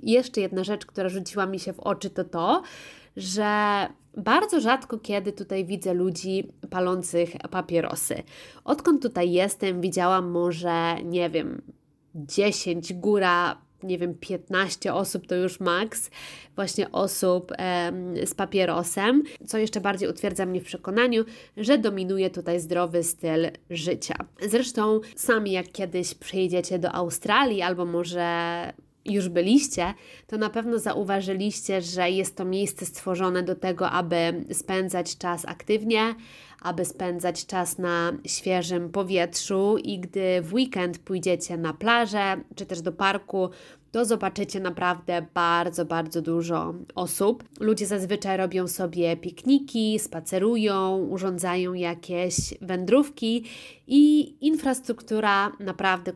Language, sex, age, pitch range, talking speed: Polish, female, 20-39, 175-205 Hz, 125 wpm